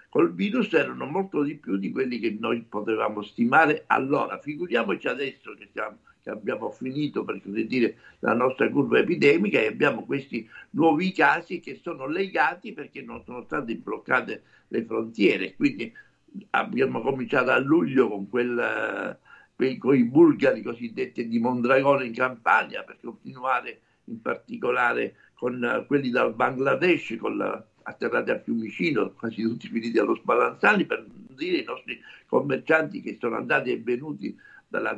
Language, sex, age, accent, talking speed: Italian, male, 60-79, native, 150 wpm